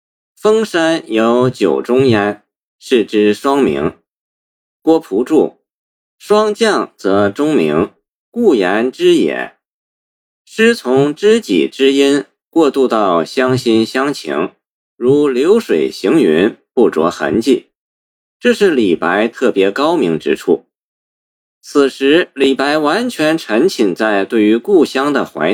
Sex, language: male, Chinese